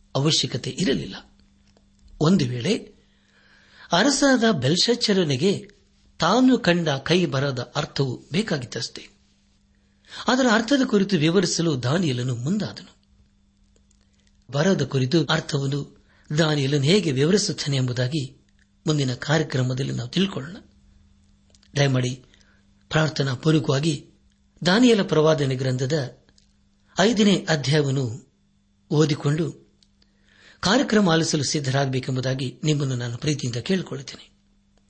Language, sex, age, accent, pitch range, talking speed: Kannada, male, 60-79, native, 100-160 Hz, 75 wpm